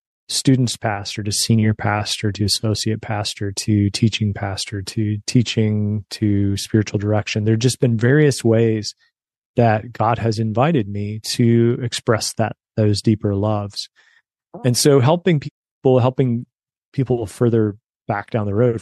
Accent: American